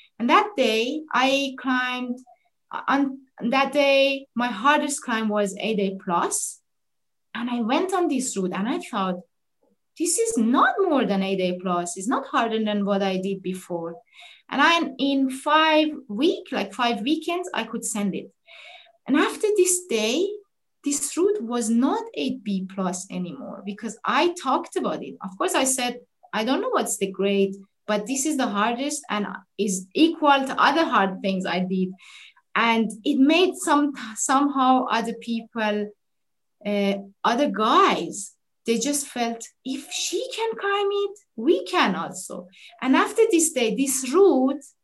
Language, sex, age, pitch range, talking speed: English, female, 20-39, 210-310 Hz, 155 wpm